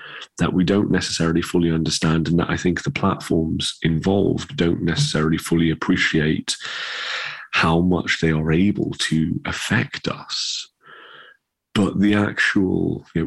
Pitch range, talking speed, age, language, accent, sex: 75-95 Hz, 130 wpm, 30-49, English, British, male